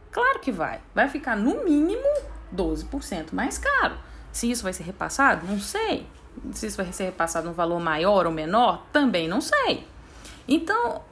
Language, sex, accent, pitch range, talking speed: Portuguese, female, Brazilian, 180-275 Hz, 165 wpm